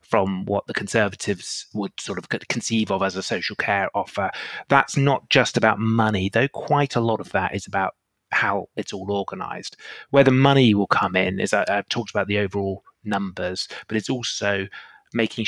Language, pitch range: English, 100-120 Hz